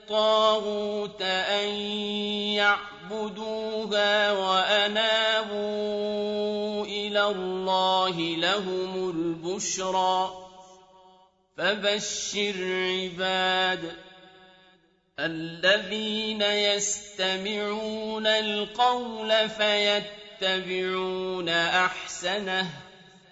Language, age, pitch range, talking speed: Arabic, 40-59, 185-210 Hz, 35 wpm